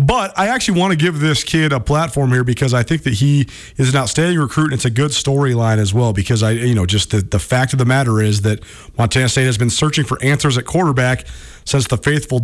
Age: 40-59